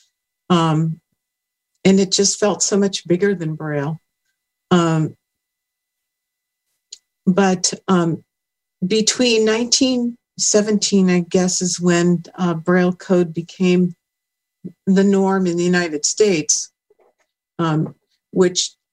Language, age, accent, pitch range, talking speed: English, 50-69, American, 175-200 Hz, 100 wpm